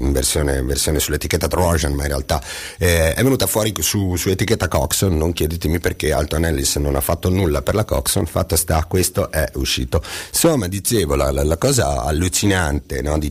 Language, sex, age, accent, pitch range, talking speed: Italian, male, 40-59, native, 75-90 Hz, 190 wpm